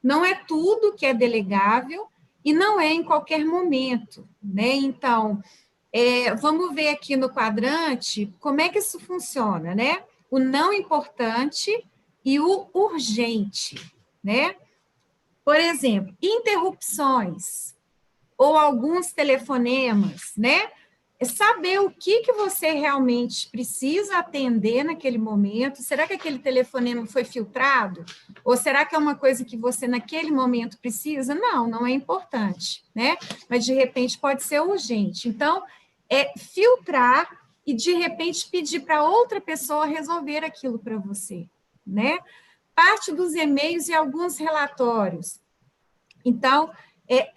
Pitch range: 235-325 Hz